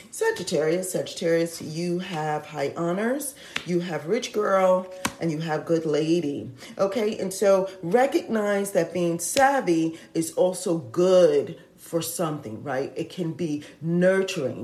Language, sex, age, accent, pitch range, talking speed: English, female, 40-59, American, 170-210 Hz, 130 wpm